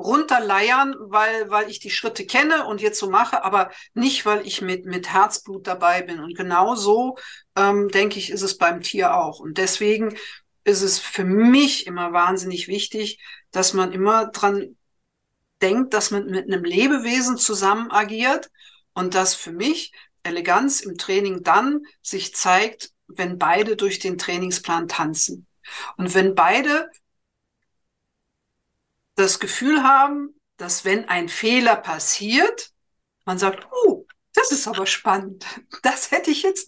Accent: German